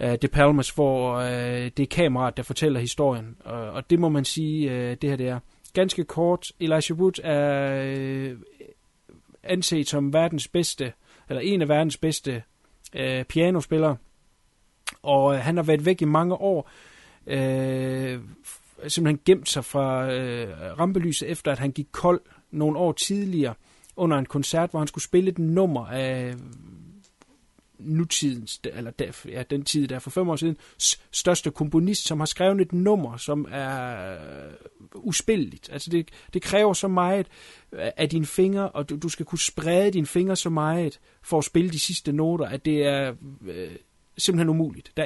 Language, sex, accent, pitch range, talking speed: Danish, male, native, 135-170 Hz, 155 wpm